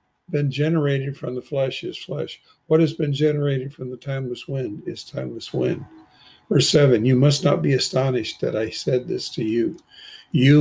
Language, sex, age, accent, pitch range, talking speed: English, male, 50-69, American, 130-165 Hz, 180 wpm